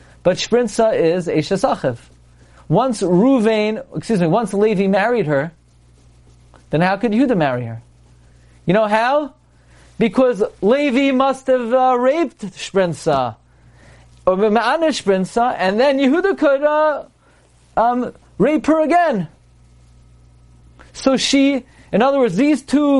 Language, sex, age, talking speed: English, male, 40-59, 115 wpm